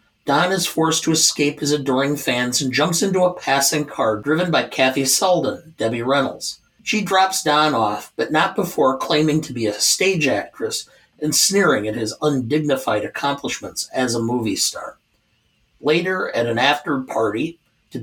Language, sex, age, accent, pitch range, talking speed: English, male, 50-69, American, 130-170 Hz, 160 wpm